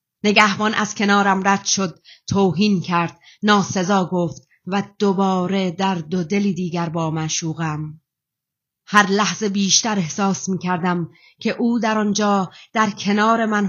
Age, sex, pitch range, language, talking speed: 30-49, female, 175-215 Hz, Persian, 125 wpm